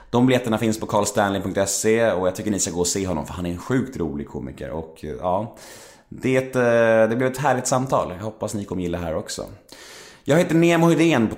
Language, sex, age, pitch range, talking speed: Swedish, male, 30-49, 90-130 Hz, 220 wpm